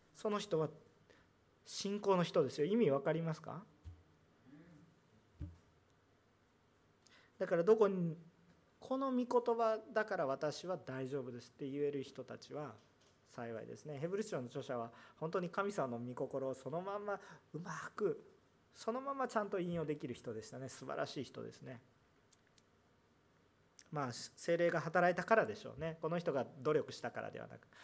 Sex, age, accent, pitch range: male, 40-59, native, 125-185 Hz